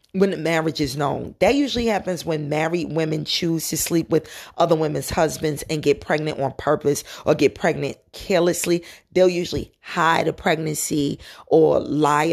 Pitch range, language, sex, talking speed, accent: 155-205 Hz, English, female, 165 wpm, American